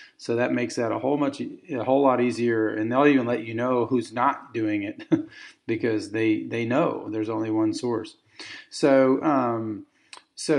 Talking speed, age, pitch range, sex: 180 wpm, 40-59, 120-180 Hz, male